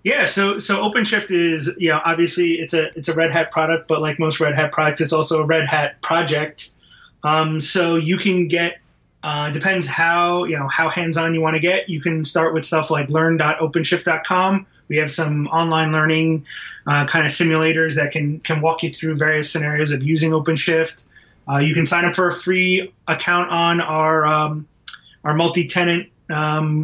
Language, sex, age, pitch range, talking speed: English, male, 30-49, 155-175 Hz, 190 wpm